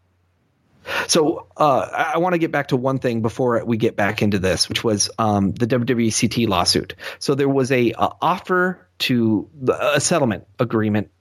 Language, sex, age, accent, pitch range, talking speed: English, male, 30-49, American, 100-130 Hz, 175 wpm